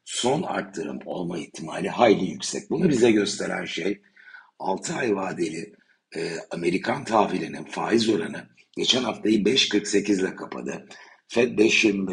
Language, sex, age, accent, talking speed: Turkish, male, 60-79, native, 120 wpm